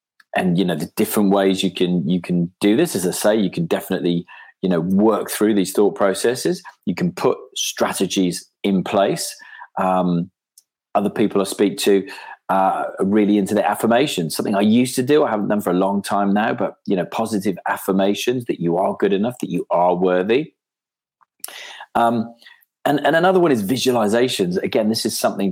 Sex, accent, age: male, British, 30-49